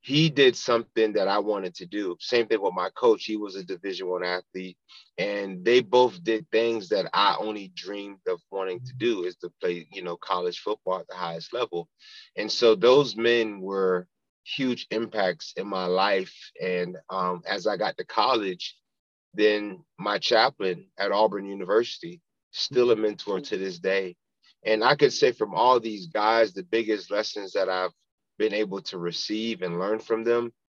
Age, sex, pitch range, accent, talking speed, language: 30-49, male, 95-125 Hz, American, 180 wpm, English